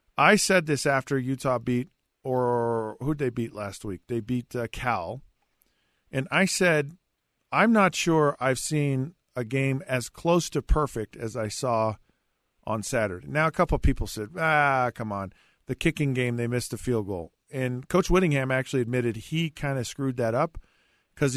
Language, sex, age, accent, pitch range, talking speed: English, male, 50-69, American, 115-145 Hz, 180 wpm